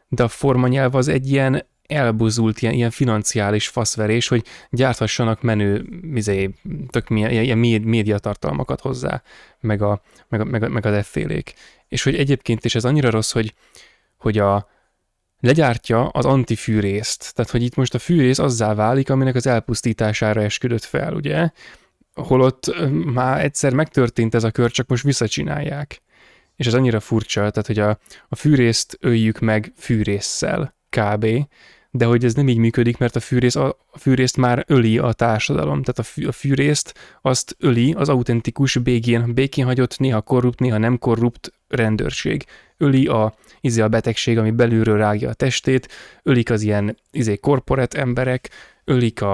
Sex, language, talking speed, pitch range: male, Hungarian, 155 wpm, 110-130 Hz